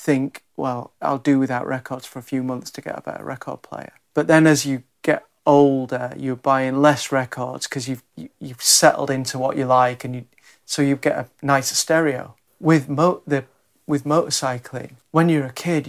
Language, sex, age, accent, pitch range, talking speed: English, male, 40-59, British, 130-150 Hz, 195 wpm